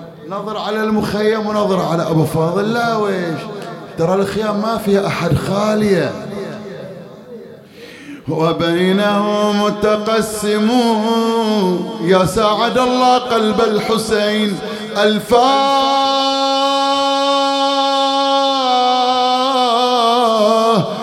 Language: English